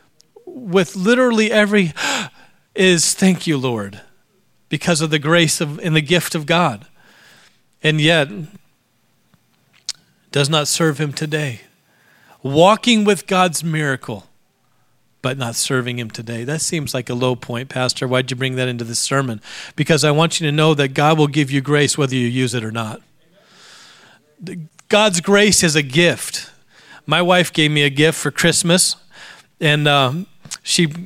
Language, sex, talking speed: English, male, 160 wpm